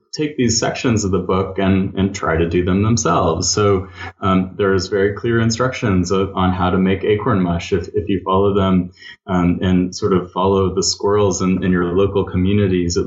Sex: male